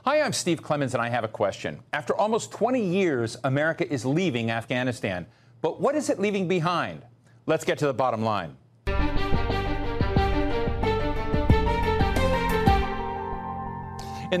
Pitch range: 120-180 Hz